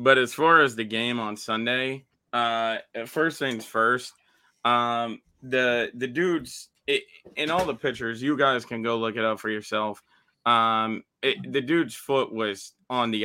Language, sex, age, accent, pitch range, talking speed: English, male, 20-39, American, 110-125 Hz, 170 wpm